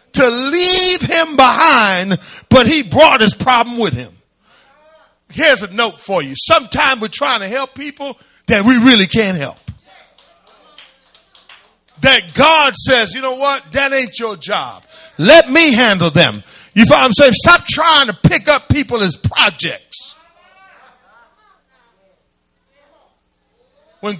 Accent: American